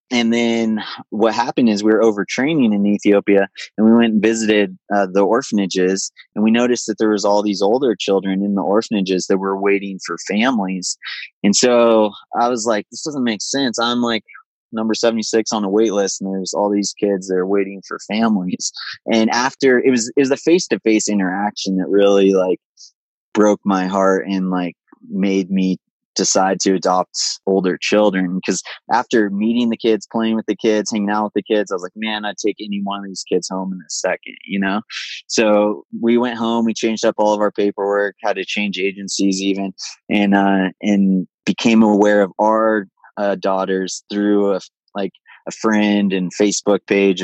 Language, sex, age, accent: English, male, 20-39, American